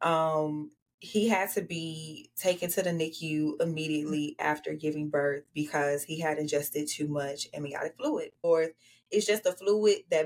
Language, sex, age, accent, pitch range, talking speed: English, female, 20-39, American, 150-165 Hz, 160 wpm